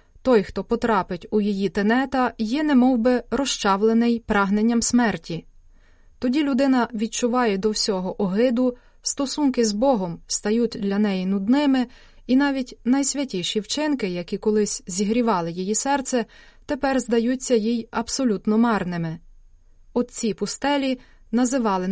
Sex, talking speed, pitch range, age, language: female, 115 wpm, 205-260 Hz, 20-39, Ukrainian